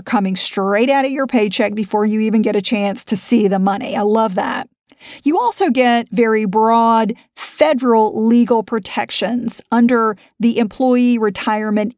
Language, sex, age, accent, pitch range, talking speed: English, female, 40-59, American, 210-255 Hz, 155 wpm